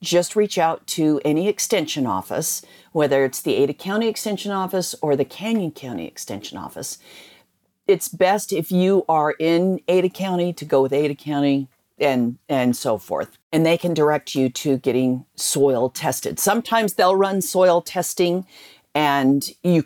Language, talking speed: English, 160 wpm